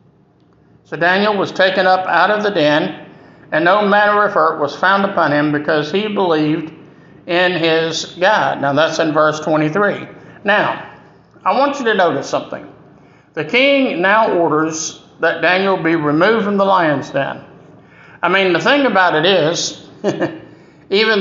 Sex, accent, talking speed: male, American, 160 wpm